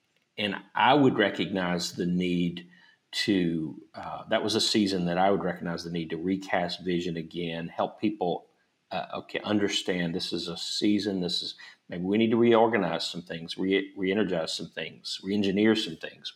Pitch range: 85-105 Hz